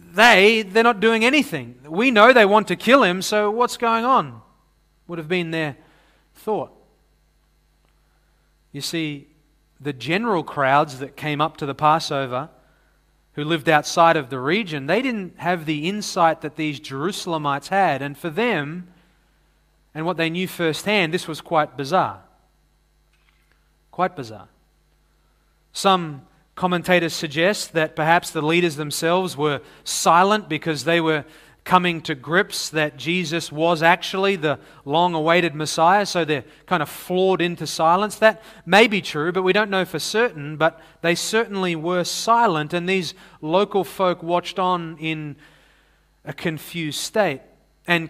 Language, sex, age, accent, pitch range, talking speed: English, male, 30-49, Australian, 155-185 Hz, 145 wpm